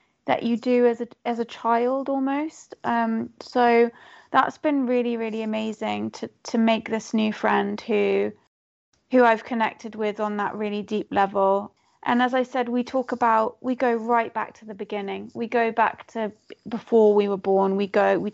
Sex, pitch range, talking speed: female, 205-235 Hz, 185 wpm